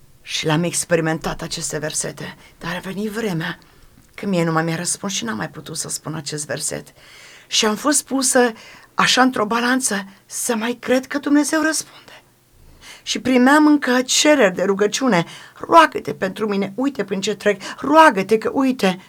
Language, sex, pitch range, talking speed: Romanian, female, 185-265 Hz, 165 wpm